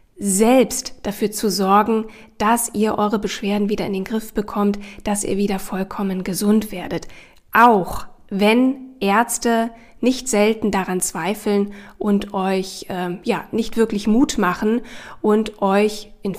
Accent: German